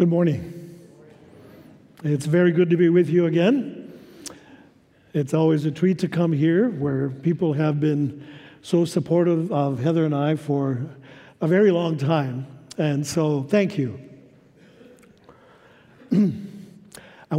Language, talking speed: English, 130 wpm